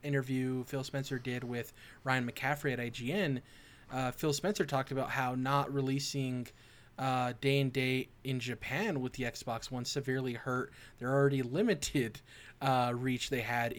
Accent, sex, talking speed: American, male, 155 wpm